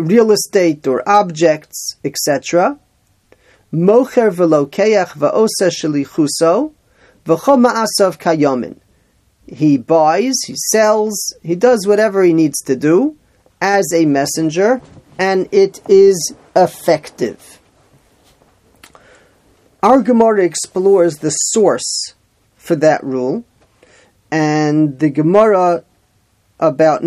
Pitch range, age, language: 150-200 Hz, 40-59, English